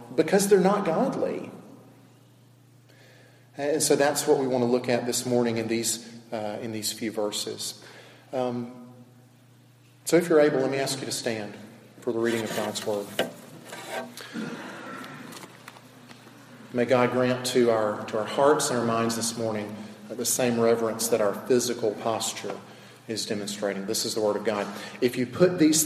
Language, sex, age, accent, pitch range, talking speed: English, male, 40-59, American, 115-135 Hz, 160 wpm